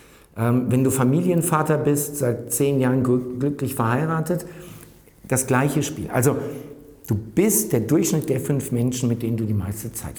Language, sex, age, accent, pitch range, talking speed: German, male, 50-69, German, 115-155 Hz, 155 wpm